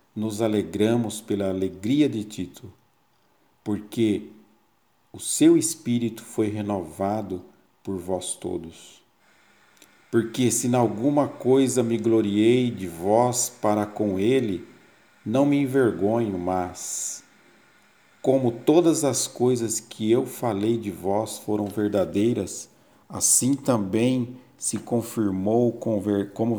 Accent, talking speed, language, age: Brazilian, 105 wpm, Portuguese, 50-69